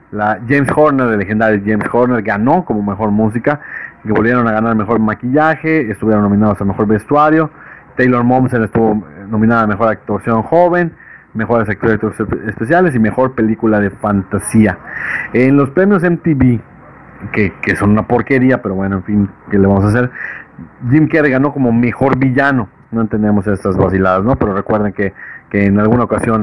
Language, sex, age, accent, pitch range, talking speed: Spanish, male, 40-59, Mexican, 105-130 Hz, 170 wpm